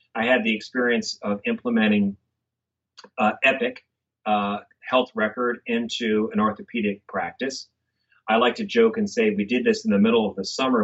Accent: American